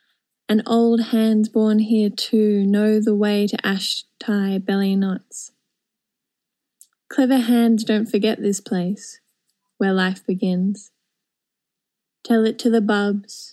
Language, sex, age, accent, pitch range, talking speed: English, female, 10-29, Australian, 195-230 Hz, 125 wpm